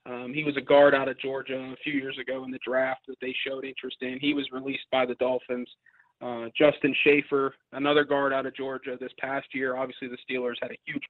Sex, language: male, English